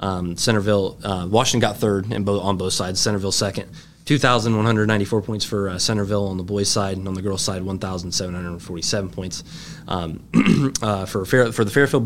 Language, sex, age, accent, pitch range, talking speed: English, male, 20-39, American, 95-115 Hz, 180 wpm